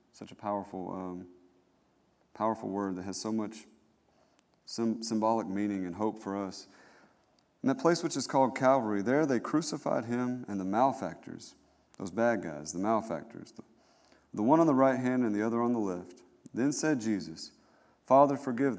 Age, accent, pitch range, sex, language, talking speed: 40-59, American, 100-125 Hz, male, English, 170 wpm